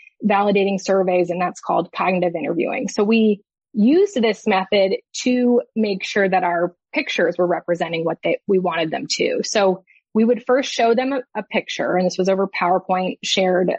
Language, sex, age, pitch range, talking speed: English, female, 20-39, 185-225 Hz, 175 wpm